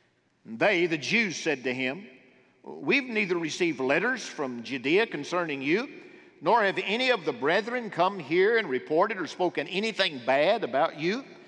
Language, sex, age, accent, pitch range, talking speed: English, male, 50-69, American, 170-245 Hz, 155 wpm